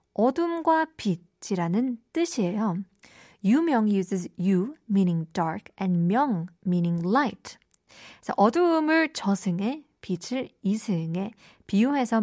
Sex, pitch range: female, 190-265 Hz